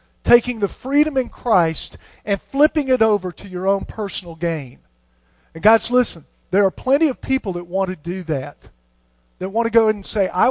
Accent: American